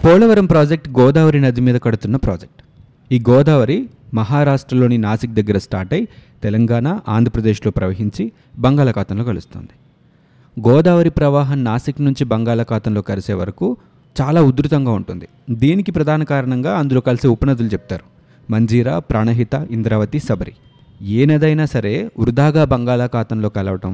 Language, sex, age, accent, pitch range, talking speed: Telugu, male, 30-49, native, 110-145 Hz, 115 wpm